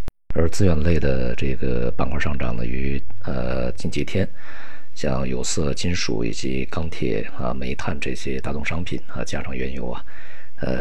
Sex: male